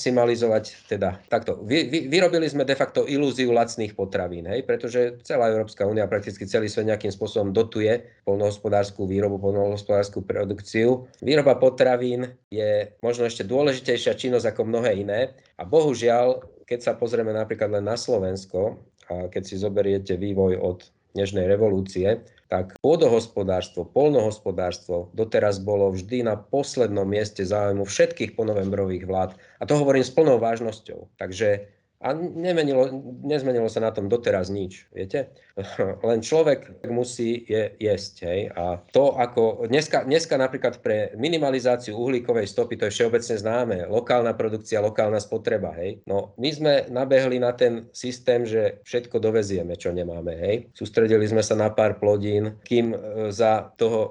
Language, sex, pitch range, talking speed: Slovak, male, 100-130 Hz, 140 wpm